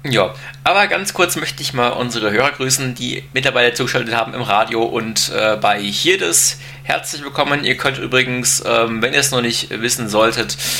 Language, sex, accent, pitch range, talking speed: German, male, German, 120-135 Hz, 190 wpm